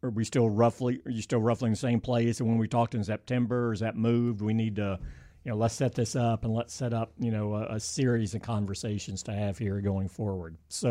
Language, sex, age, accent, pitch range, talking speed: English, male, 50-69, American, 100-120 Hz, 260 wpm